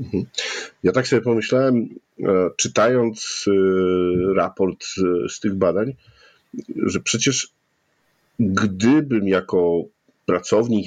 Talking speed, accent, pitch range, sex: 75 wpm, native, 95-120 Hz, male